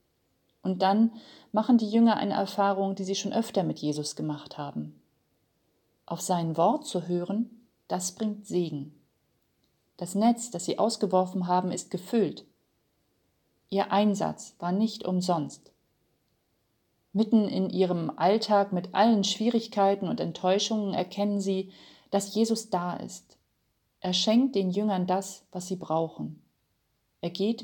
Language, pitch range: German, 175-215 Hz